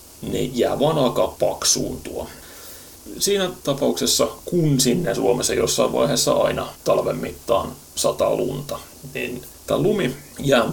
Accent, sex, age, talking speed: native, male, 30-49, 115 wpm